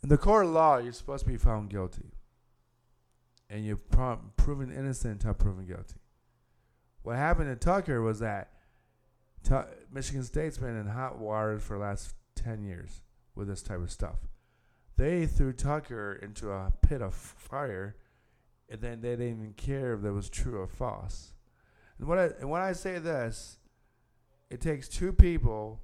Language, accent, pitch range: English, American, 100-130 Hz